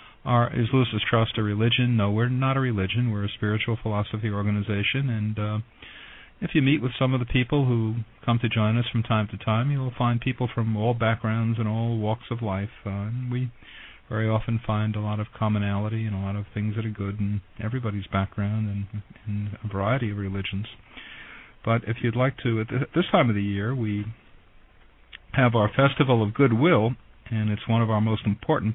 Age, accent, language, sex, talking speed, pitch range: 40-59, American, English, male, 200 wpm, 105-120 Hz